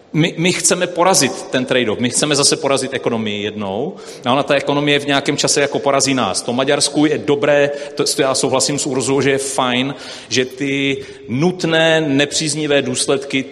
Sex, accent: male, native